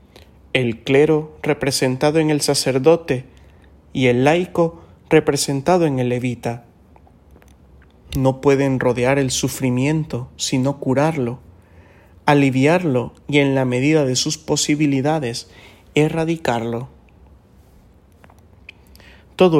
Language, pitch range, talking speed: English, 100-145 Hz, 90 wpm